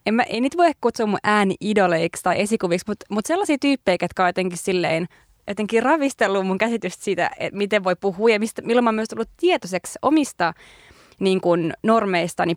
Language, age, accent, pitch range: Finnish, 20-39, native, 185-240 Hz